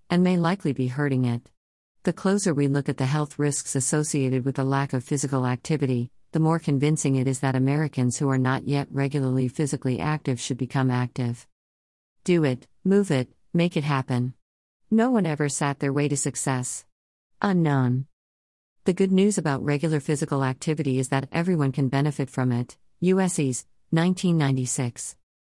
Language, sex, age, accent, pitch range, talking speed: English, female, 50-69, American, 130-155 Hz, 165 wpm